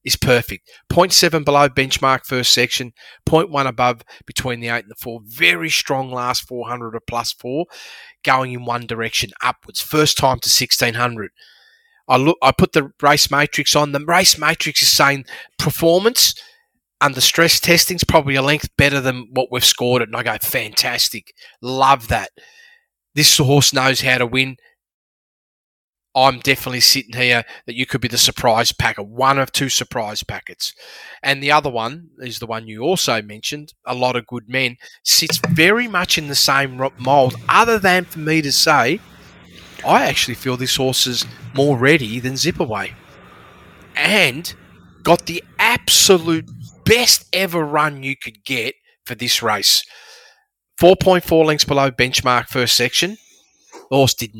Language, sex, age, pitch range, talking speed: English, male, 30-49, 125-160 Hz, 160 wpm